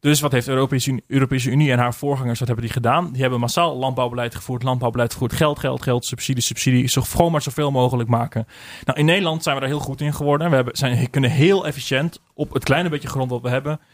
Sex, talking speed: male, 235 wpm